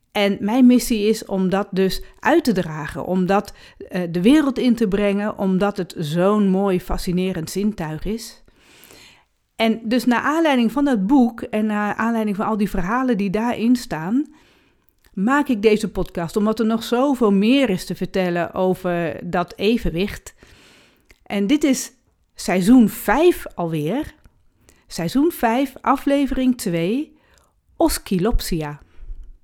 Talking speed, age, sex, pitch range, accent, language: 135 wpm, 40-59, female, 180-245 Hz, Dutch, Dutch